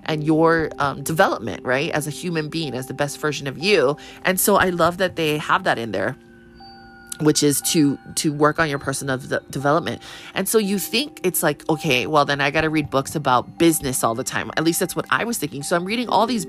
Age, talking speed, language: 20-39, 235 wpm, English